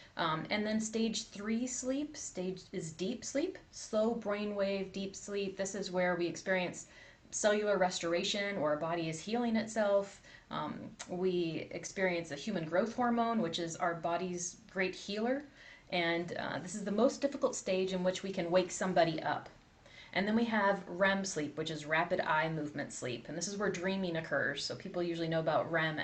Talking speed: 180 wpm